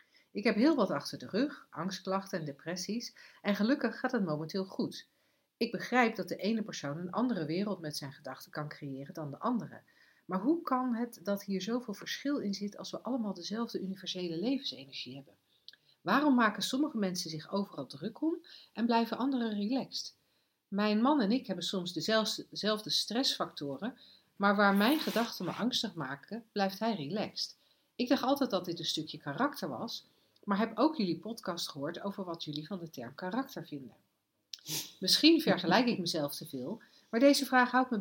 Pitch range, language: 165-235 Hz, Dutch